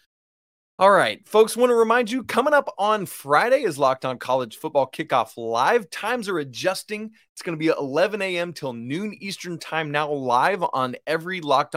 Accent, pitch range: American, 125-180 Hz